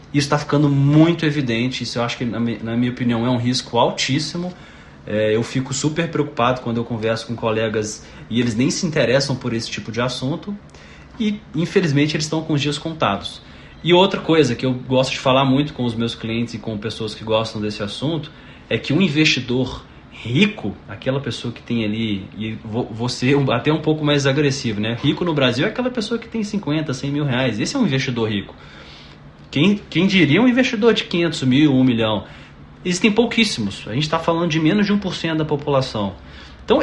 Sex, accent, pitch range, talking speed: male, Brazilian, 115-155 Hz, 200 wpm